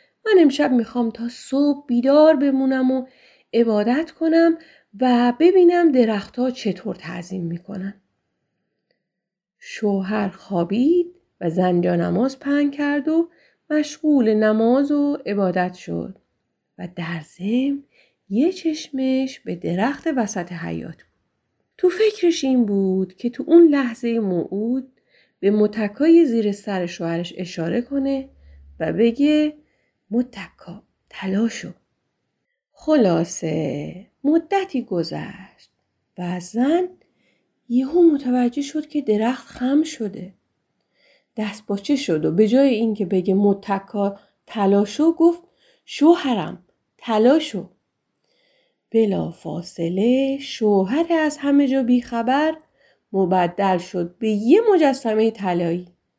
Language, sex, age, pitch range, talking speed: Persian, female, 30-49, 195-290 Hz, 105 wpm